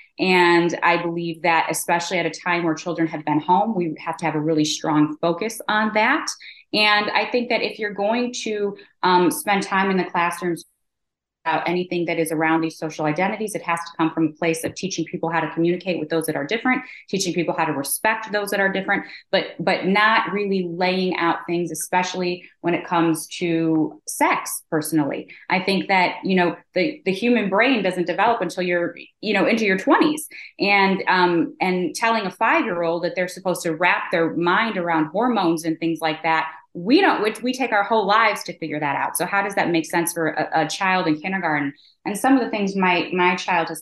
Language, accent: English, American